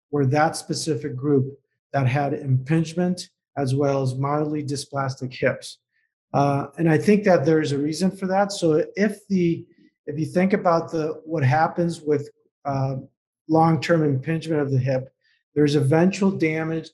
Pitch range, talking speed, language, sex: 145-165 Hz, 150 wpm, English, male